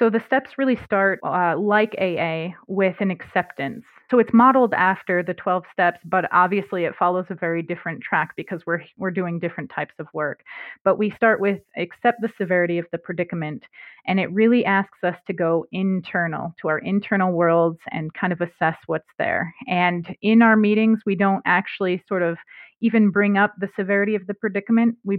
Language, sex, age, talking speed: English, female, 30-49, 190 wpm